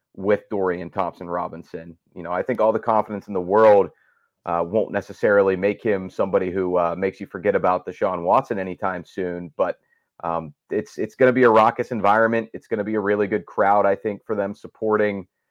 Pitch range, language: 95-120 Hz, English